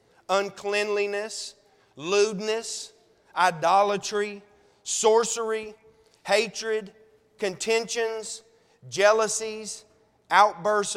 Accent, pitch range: American, 195-225 Hz